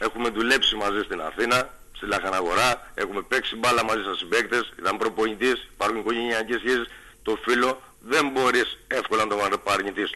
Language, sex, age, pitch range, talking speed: Greek, male, 60-79, 115-145 Hz, 155 wpm